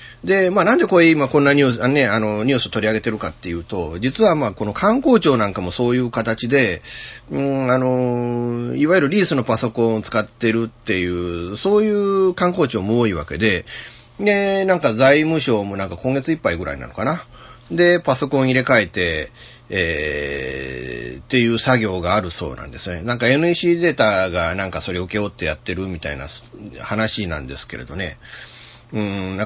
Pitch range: 95-140 Hz